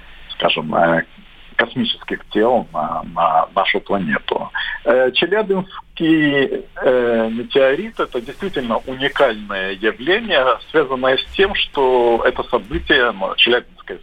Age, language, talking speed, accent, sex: 50-69, Russian, 90 wpm, native, male